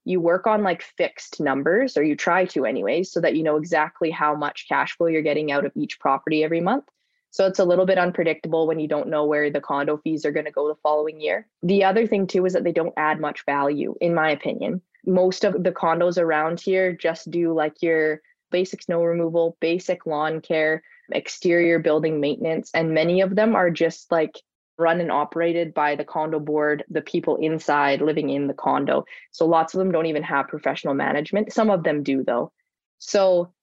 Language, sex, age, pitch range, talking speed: English, female, 20-39, 155-185 Hz, 210 wpm